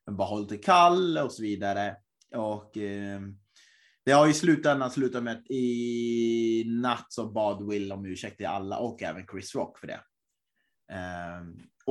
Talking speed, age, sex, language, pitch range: 150 wpm, 20-39, male, Swedish, 110-145 Hz